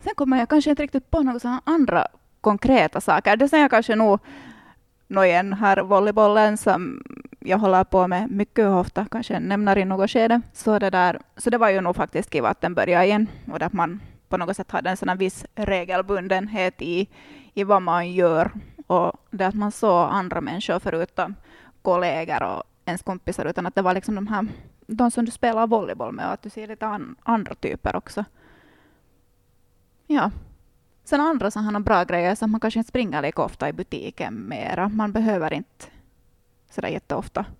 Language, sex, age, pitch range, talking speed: Swedish, female, 20-39, 185-225 Hz, 185 wpm